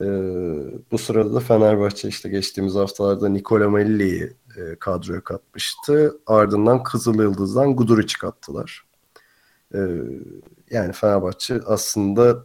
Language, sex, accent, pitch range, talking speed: Turkish, male, native, 100-115 Hz, 105 wpm